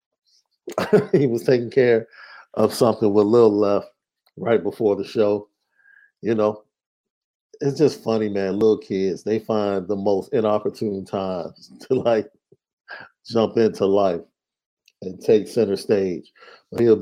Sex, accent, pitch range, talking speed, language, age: male, American, 100-115 Hz, 130 wpm, English, 50-69